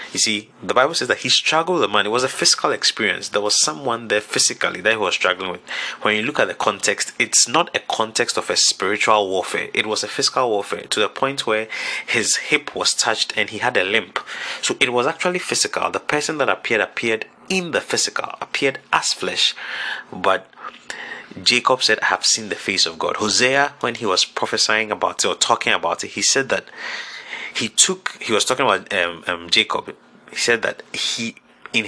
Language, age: English, 30-49